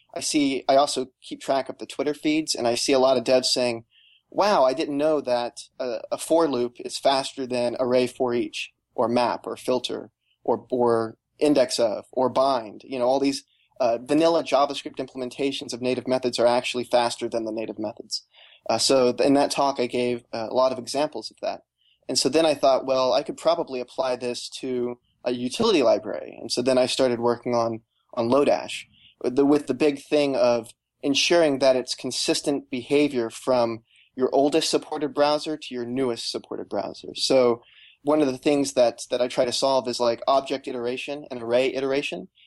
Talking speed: 190 wpm